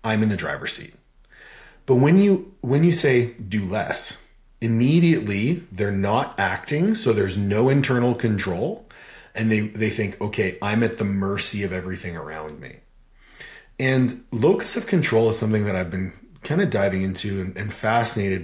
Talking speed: 165 wpm